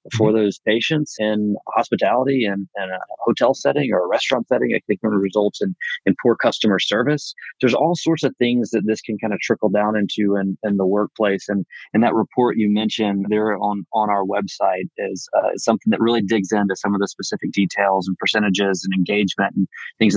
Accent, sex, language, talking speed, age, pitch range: American, male, English, 210 wpm, 30-49, 100-110 Hz